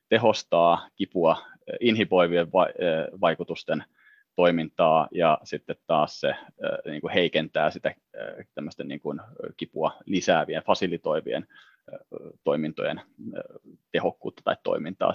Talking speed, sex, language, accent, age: 110 wpm, male, Finnish, native, 30-49